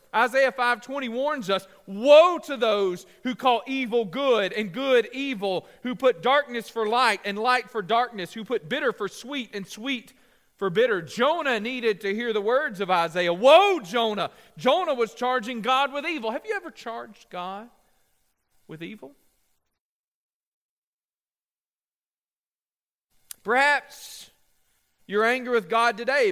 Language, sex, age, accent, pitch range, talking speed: English, male, 40-59, American, 225-295 Hz, 140 wpm